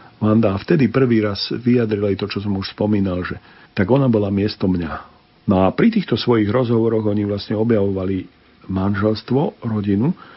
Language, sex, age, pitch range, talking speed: Slovak, male, 50-69, 95-120 Hz, 160 wpm